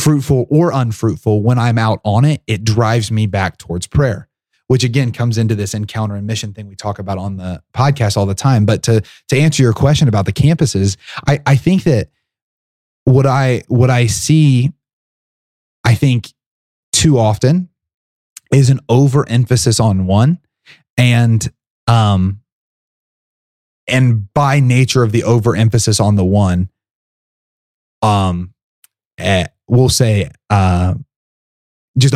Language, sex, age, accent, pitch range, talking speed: English, male, 30-49, American, 105-135 Hz, 140 wpm